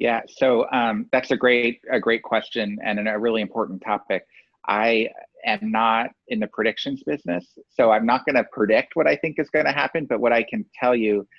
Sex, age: male, 30-49